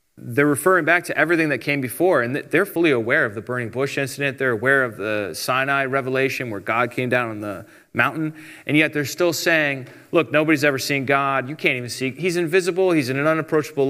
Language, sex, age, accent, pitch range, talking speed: English, male, 30-49, American, 130-165 Hz, 215 wpm